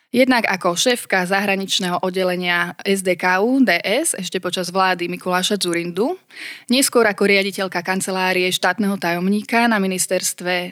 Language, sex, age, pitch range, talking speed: Slovak, female, 20-39, 180-210 Hz, 110 wpm